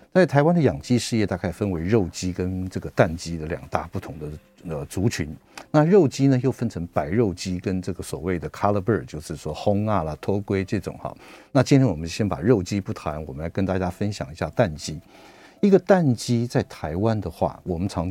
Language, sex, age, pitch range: Chinese, male, 50-69, 90-120 Hz